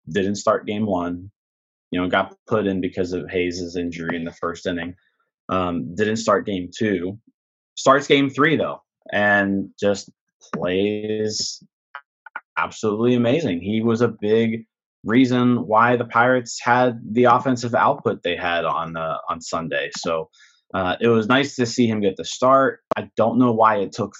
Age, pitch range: 20-39, 95-120 Hz